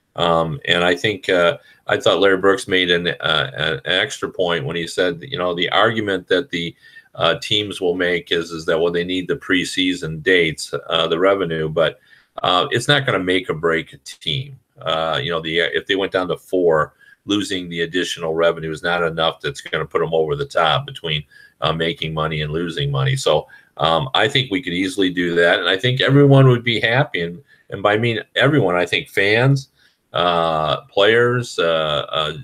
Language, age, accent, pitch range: English, 40-59, American, 85-120 Hz